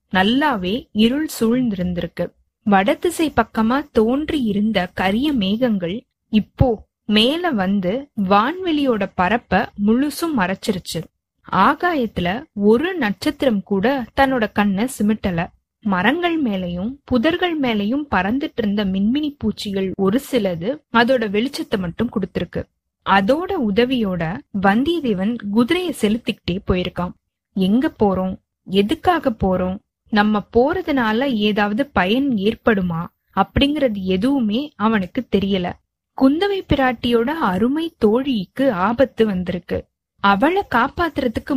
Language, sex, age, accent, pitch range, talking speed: Tamil, female, 20-39, native, 200-270 Hz, 95 wpm